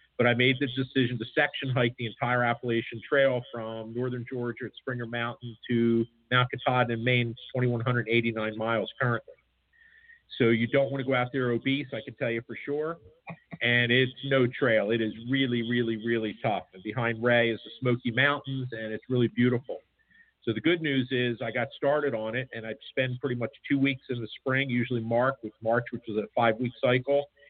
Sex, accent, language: male, American, English